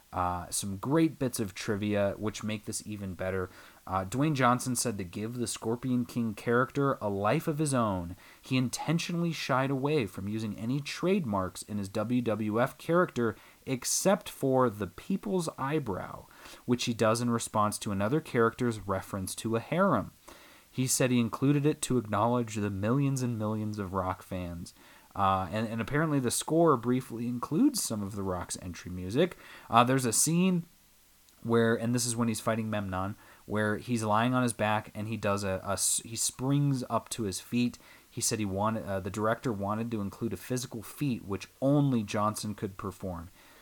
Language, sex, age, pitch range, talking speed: English, male, 30-49, 105-130 Hz, 180 wpm